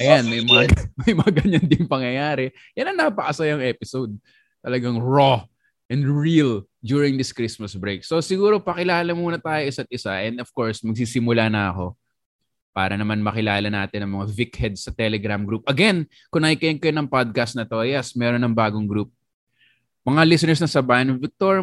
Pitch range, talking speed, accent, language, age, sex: 110-140 Hz, 165 wpm, Filipino, English, 20-39, male